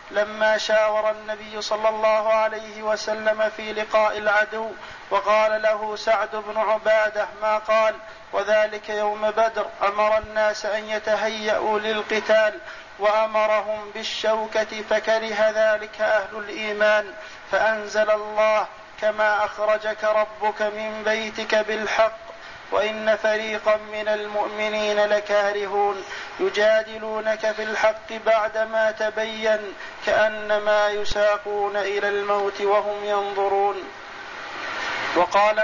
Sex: male